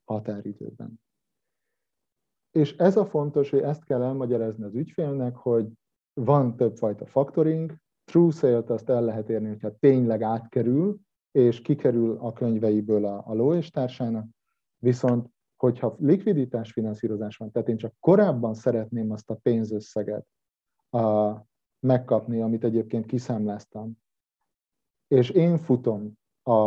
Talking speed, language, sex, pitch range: 120 wpm, Hungarian, male, 110-135 Hz